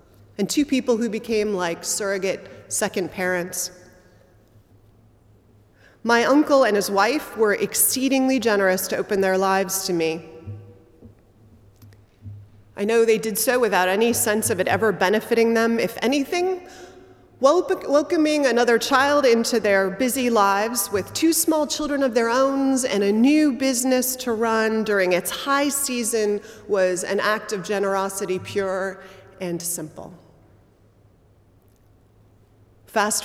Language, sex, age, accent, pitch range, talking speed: English, female, 30-49, American, 165-220 Hz, 130 wpm